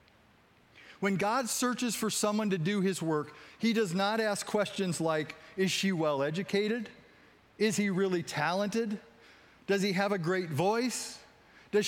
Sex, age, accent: male, 50-69, American